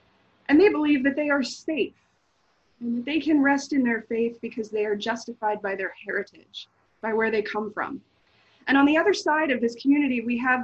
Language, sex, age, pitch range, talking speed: English, female, 20-39, 225-285 Hz, 210 wpm